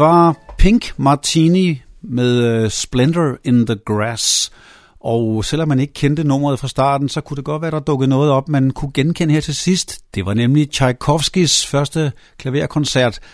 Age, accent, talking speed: 60-79, native, 175 wpm